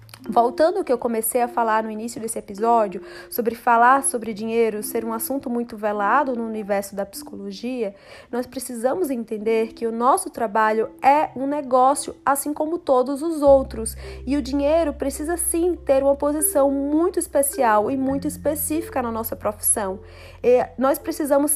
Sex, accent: female, Brazilian